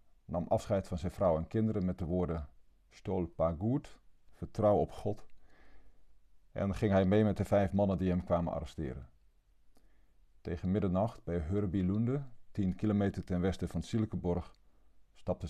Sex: male